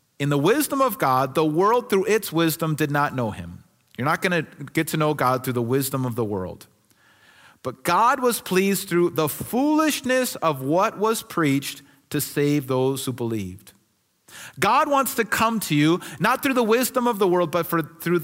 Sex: male